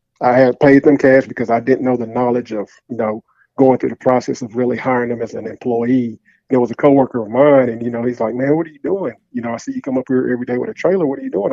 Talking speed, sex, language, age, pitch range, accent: 305 wpm, male, English, 40-59, 115-130 Hz, American